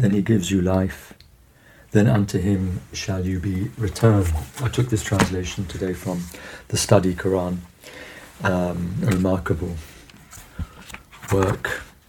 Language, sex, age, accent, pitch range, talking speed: English, male, 60-79, British, 90-105 Hz, 115 wpm